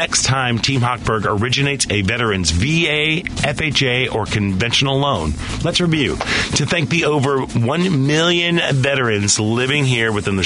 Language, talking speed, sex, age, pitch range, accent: English, 145 wpm, male, 40-59, 105-140 Hz, American